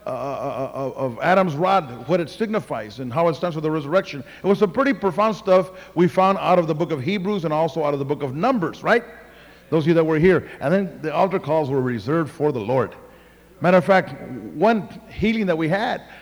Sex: male